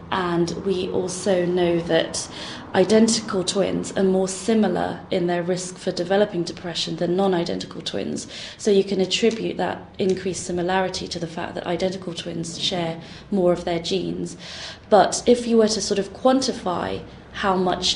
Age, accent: 20-39, British